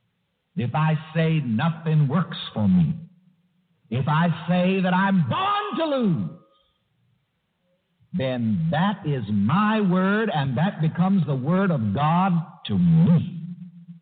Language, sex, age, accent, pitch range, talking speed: English, male, 60-79, American, 155-190 Hz, 125 wpm